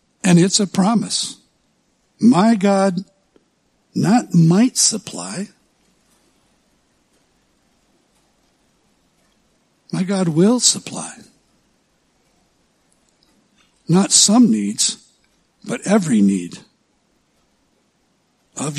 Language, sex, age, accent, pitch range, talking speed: English, male, 60-79, American, 170-205 Hz, 65 wpm